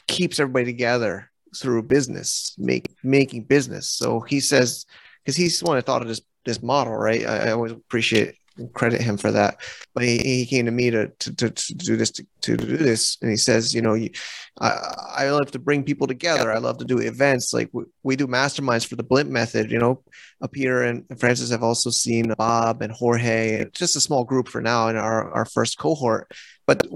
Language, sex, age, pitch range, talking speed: English, male, 30-49, 120-145 Hz, 220 wpm